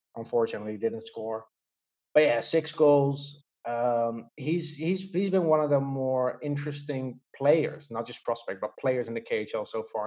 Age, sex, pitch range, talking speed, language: 30-49, male, 115-145 Hz, 175 wpm, English